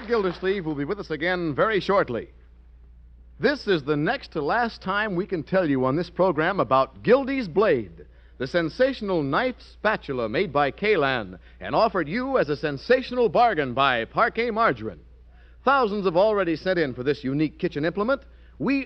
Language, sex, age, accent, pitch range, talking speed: English, male, 60-79, American, 135-225 Hz, 170 wpm